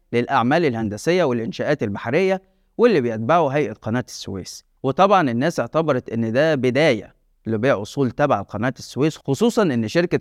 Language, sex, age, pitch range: Arabic, male, 30-49, 110-150 Hz